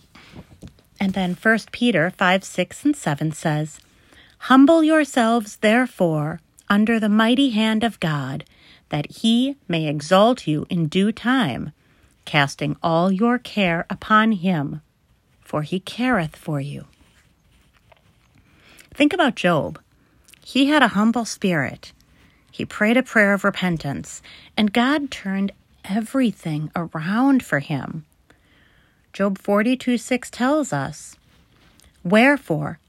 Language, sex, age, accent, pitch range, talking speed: English, female, 40-59, American, 160-230 Hz, 120 wpm